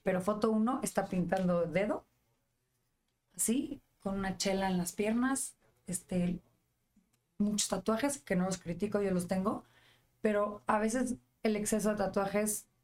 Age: 30-49